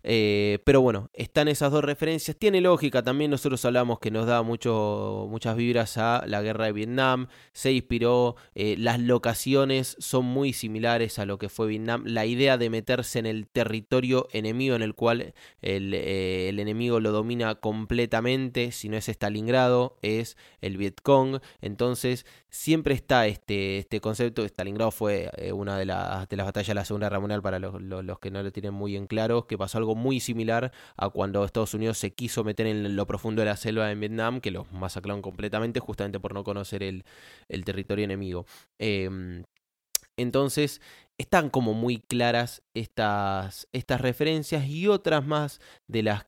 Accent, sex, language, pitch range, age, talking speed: Argentinian, male, Spanish, 105-130 Hz, 20-39, 180 wpm